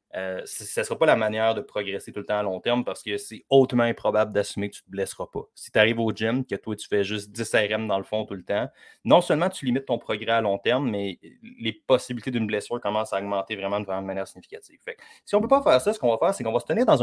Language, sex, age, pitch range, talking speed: French, male, 30-49, 105-130 Hz, 300 wpm